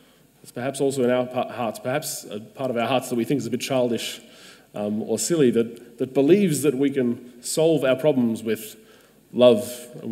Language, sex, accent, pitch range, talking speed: English, male, Australian, 120-140 Hz, 200 wpm